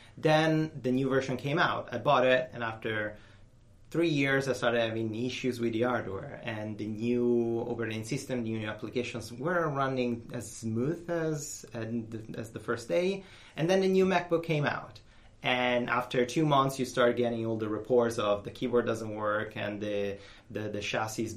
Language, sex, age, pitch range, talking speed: English, male, 30-49, 105-125 Hz, 185 wpm